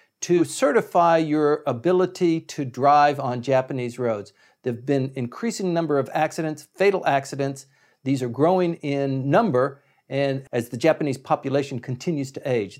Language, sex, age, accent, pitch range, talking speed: English, male, 50-69, American, 135-180 Hz, 145 wpm